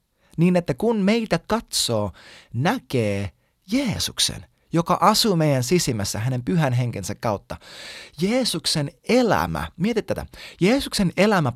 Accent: native